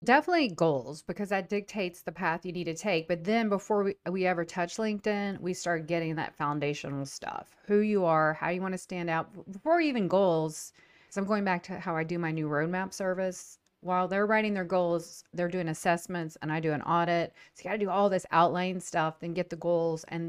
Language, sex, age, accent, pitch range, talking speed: English, female, 40-59, American, 165-195 Hz, 225 wpm